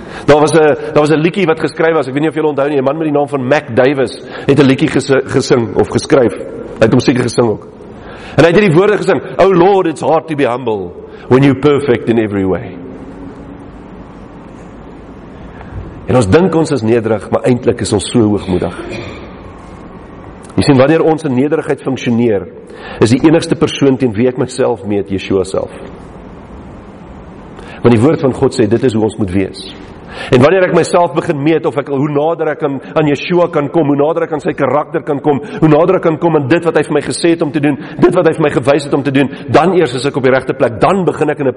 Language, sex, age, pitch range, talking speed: English, male, 50-69, 130-165 Hz, 230 wpm